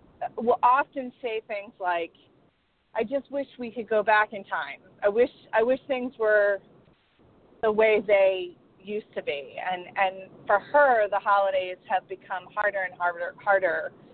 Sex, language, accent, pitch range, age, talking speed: female, English, American, 190-250 Hz, 30-49, 160 wpm